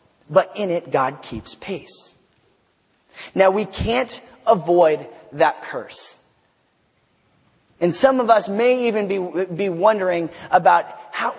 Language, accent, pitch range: English, American, 190-260 Hz